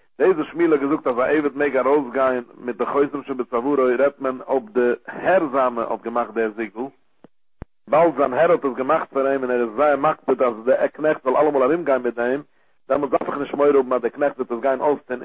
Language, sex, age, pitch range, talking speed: English, male, 60-79, 120-145 Hz, 160 wpm